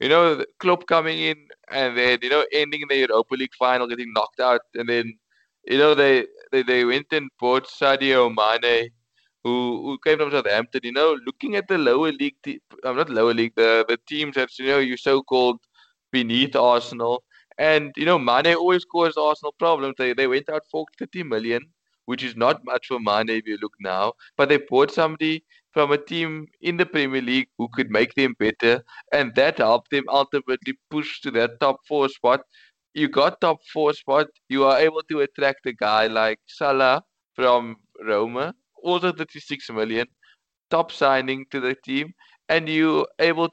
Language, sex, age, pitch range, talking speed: English, male, 20-39, 125-155 Hz, 185 wpm